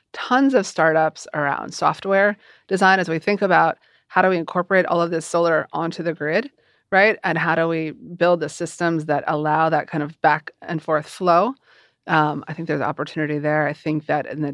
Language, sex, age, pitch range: English, female, 30-49, 155-195 Hz